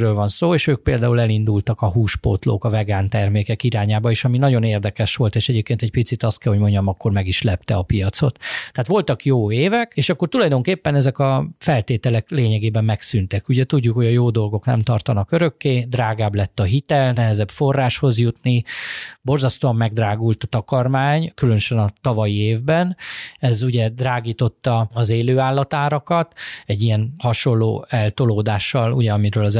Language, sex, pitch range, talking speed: Hungarian, male, 110-135 Hz, 160 wpm